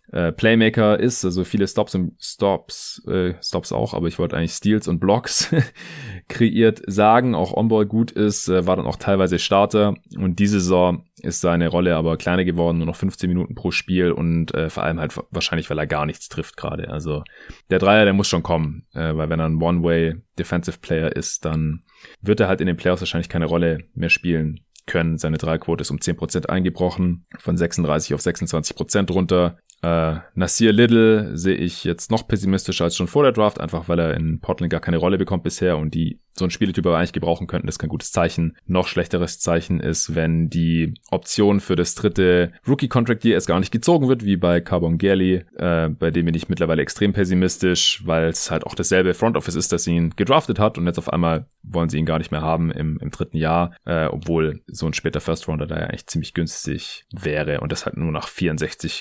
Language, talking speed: German, 210 wpm